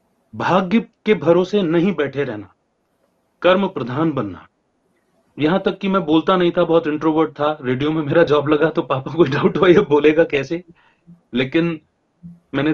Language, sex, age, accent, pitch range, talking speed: Hindi, male, 30-49, native, 125-165 Hz, 150 wpm